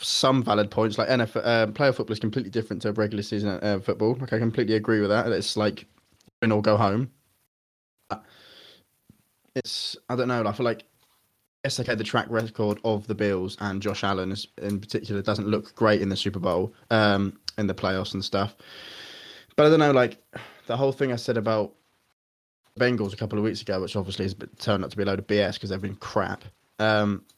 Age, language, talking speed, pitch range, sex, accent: 20-39, English, 210 wpm, 100-115 Hz, male, British